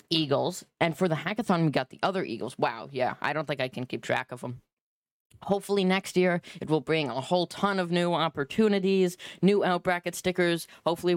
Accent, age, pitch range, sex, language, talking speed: American, 20-39, 145-190 Hz, female, English, 205 wpm